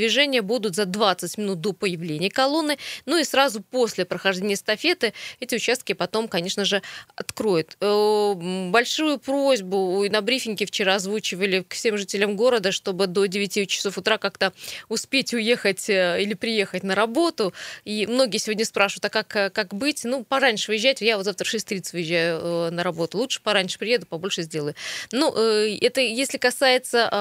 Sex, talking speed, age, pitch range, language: female, 155 wpm, 20-39, 195-235 Hz, Russian